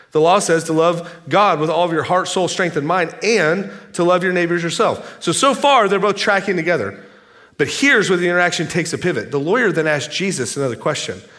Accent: American